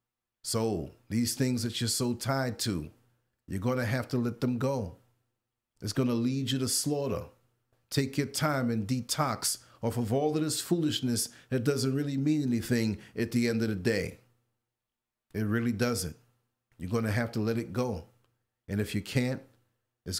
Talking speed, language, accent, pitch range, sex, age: 180 wpm, English, American, 105-130 Hz, male, 50-69